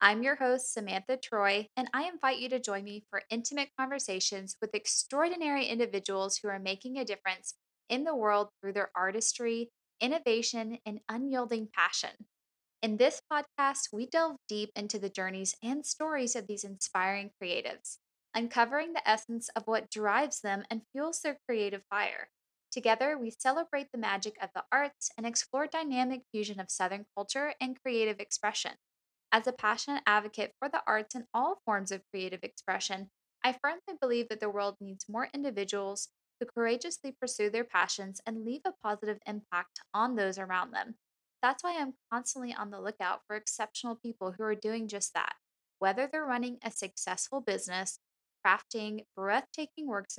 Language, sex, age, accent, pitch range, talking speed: English, female, 10-29, American, 200-255 Hz, 165 wpm